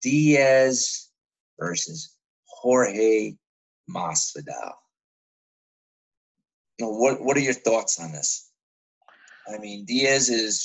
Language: English